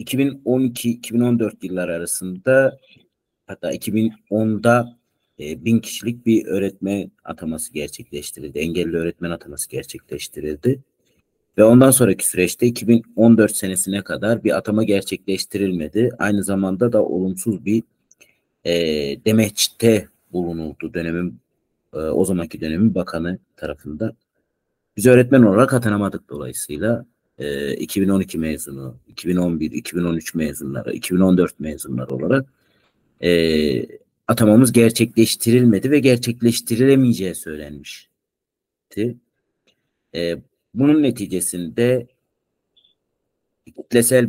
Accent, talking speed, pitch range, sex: native, 85 wpm, 90-120 Hz, male